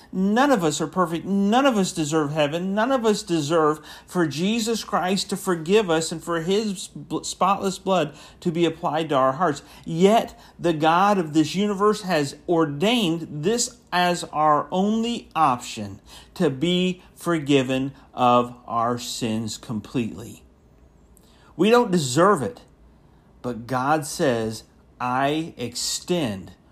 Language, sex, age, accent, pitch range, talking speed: English, male, 50-69, American, 125-180 Hz, 135 wpm